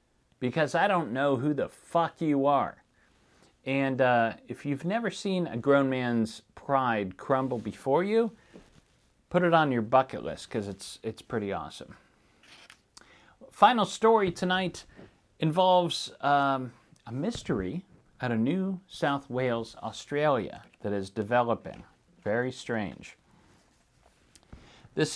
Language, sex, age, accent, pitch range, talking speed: English, male, 40-59, American, 115-165 Hz, 125 wpm